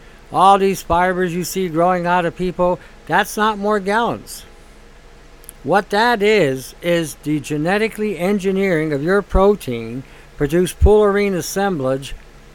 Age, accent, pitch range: 60-79, American, 145-195 Hz